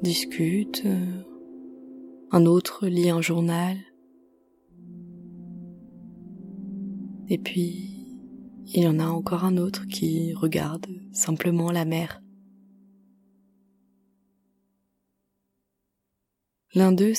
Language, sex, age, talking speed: French, female, 20-39, 75 wpm